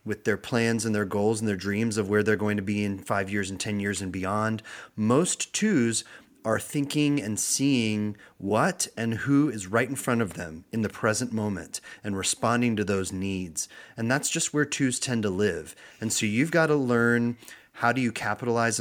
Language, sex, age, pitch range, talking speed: English, male, 30-49, 100-115 Hz, 205 wpm